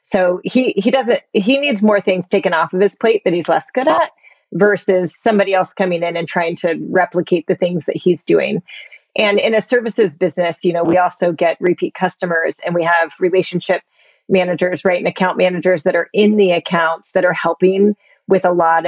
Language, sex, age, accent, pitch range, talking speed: English, female, 30-49, American, 175-205 Hz, 205 wpm